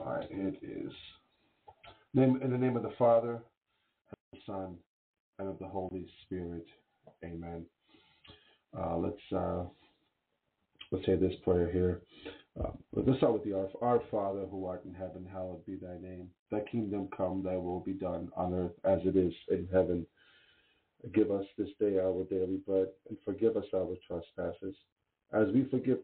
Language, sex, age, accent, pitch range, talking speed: English, male, 50-69, American, 95-105 Hz, 170 wpm